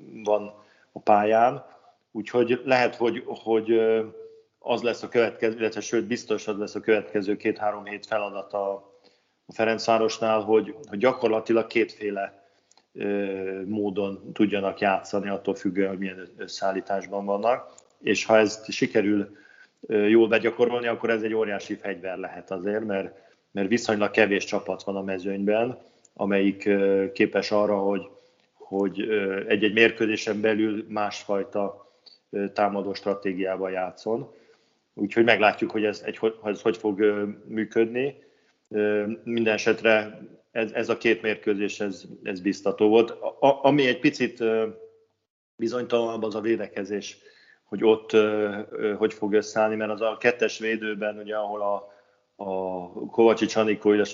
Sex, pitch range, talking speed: male, 100-110 Hz, 125 wpm